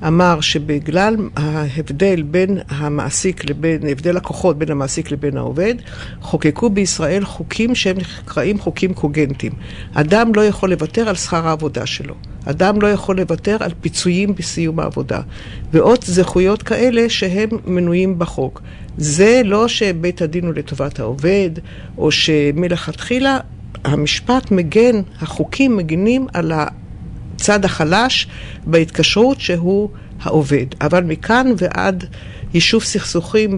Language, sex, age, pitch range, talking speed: Hebrew, female, 50-69, 155-205 Hz, 120 wpm